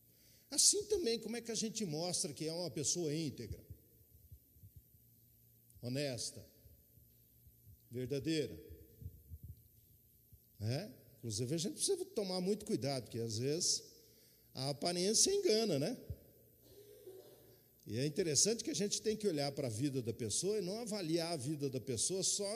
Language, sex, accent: Portuguese, male, Brazilian